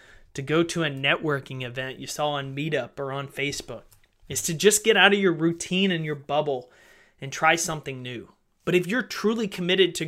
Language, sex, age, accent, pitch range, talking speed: English, male, 30-49, American, 140-180 Hz, 200 wpm